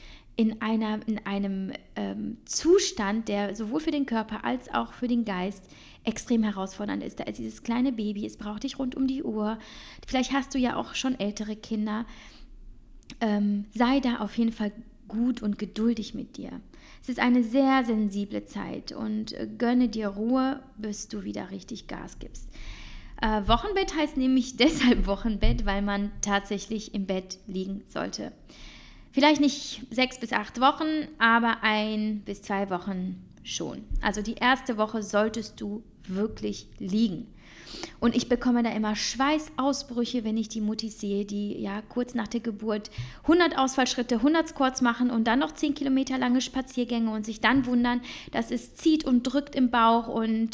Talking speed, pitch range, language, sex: 165 wpm, 210-255 Hz, German, female